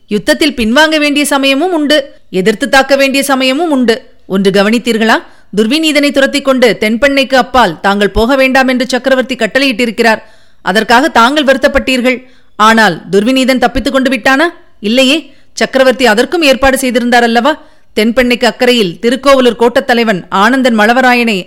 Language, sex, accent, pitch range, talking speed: Tamil, female, native, 220-270 Hz, 115 wpm